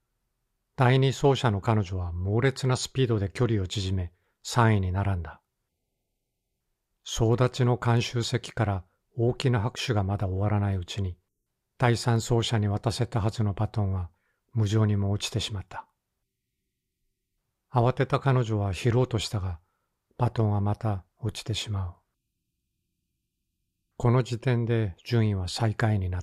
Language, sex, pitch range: Japanese, male, 95-120 Hz